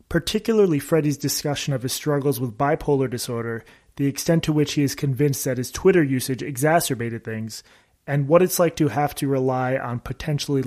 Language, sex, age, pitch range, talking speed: English, male, 30-49, 130-160 Hz, 180 wpm